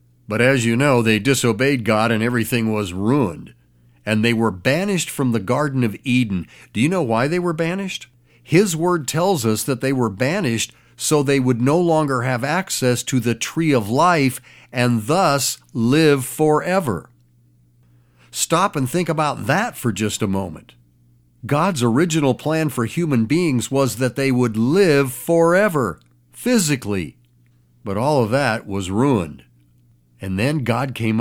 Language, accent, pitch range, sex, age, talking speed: English, American, 110-150 Hz, male, 50-69, 160 wpm